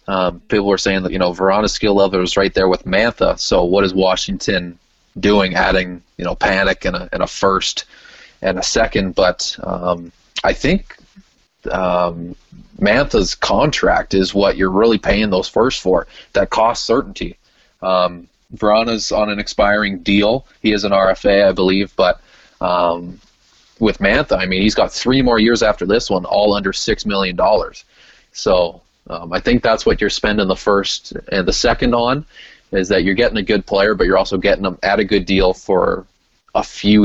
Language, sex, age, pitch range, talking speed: English, male, 20-39, 90-105 Hz, 185 wpm